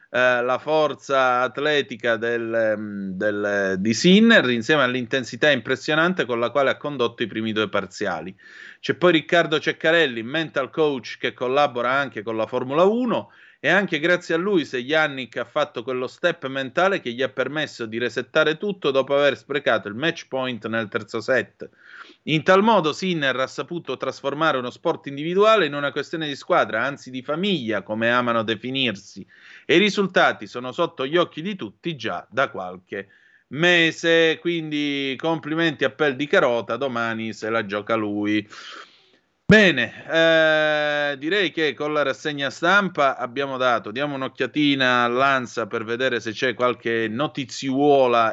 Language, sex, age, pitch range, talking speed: Italian, male, 30-49, 115-155 Hz, 150 wpm